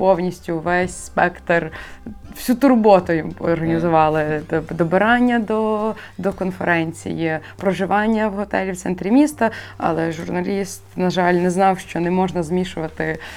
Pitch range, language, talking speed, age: 165-205 Hz, Ukrainian, 120 wpm, 20-39